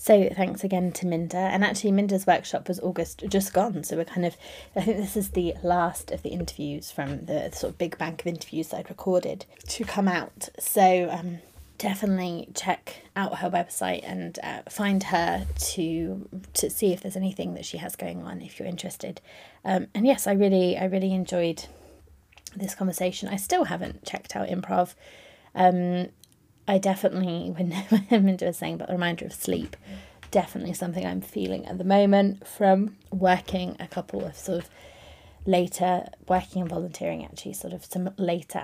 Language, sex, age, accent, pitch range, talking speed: English, female, 20-39, British, 175-200 Hz, 180 wpm